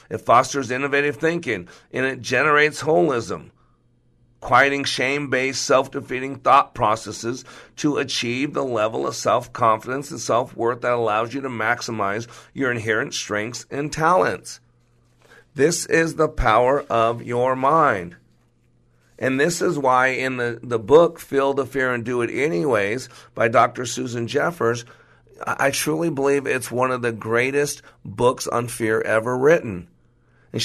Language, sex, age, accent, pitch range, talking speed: English, male, 50-69, American, 120-140 Hz, 140 wpm